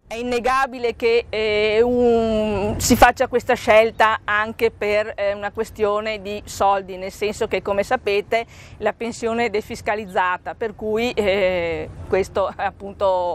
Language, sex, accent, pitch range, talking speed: Italian, female, native, 205-245 Hz, 140 wpm